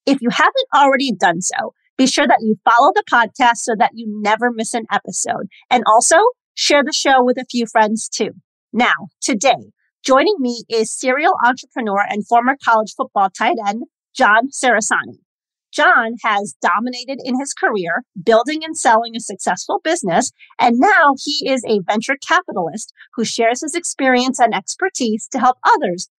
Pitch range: 215-280 Hz